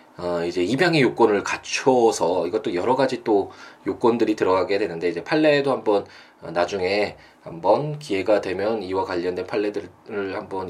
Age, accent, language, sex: 20-39, native, Korean, male